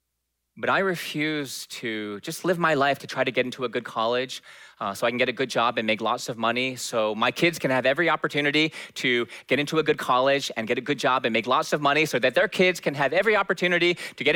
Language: Korean